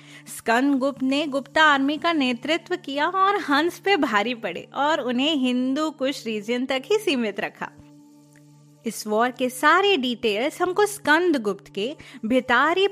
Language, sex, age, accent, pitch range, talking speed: Hindi, female, 20-39, native, 220-335 Hz, 145 wpm